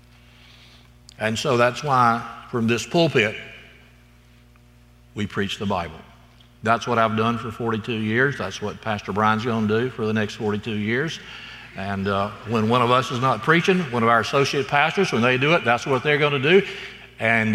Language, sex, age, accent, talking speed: English, male, 60-79, American, 180 wpm